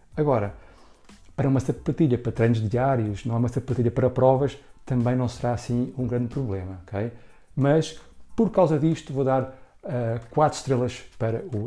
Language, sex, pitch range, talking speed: Portuguese, male, 115-140 Hz, 160 wpm